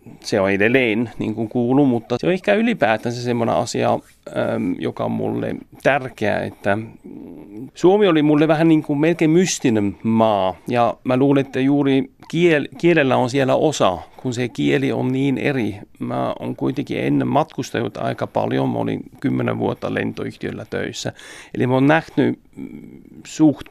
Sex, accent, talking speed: male, native, 150 wpm